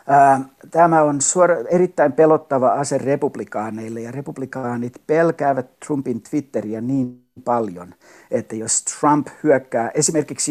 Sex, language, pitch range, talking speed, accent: male, Finnish, 120-150 Hz, 110 wpm, native